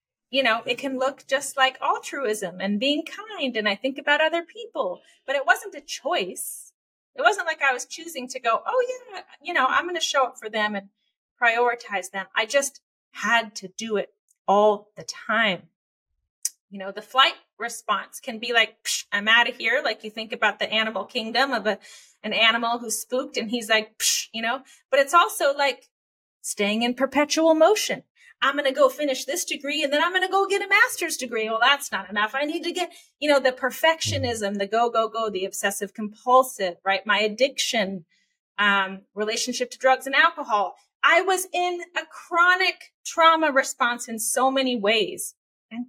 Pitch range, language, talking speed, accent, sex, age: 220-310 Hz, English, 195 wpm, American, female, 30-49